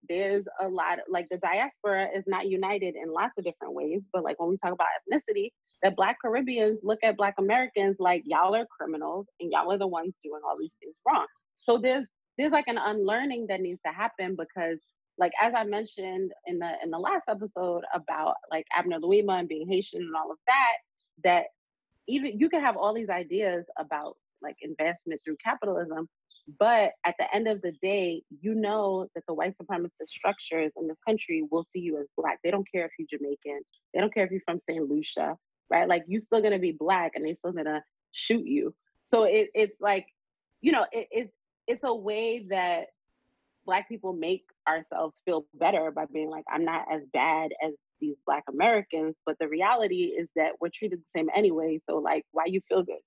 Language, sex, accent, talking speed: English, female, American, 200 wpm